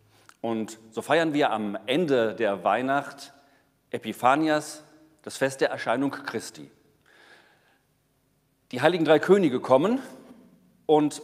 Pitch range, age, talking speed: 125-155 Hz, 40-59, 105 wpm